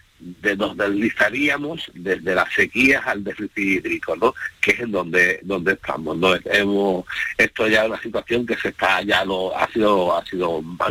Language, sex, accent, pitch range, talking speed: Spanish, male, Spanish, 100-130 Hz, 175 wpm